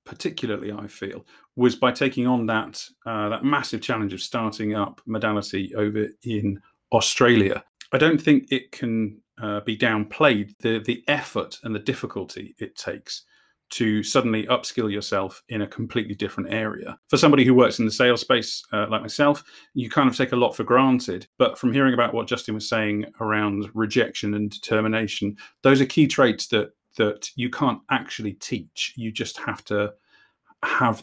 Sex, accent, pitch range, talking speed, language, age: male, British, 105-125 Hz, 175 wpm, English, 40-59